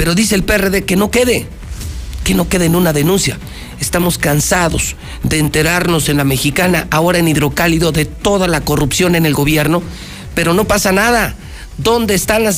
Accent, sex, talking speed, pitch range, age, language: Mexican, male, 175 wpm, 135-185 Hz, 50-69, Spanish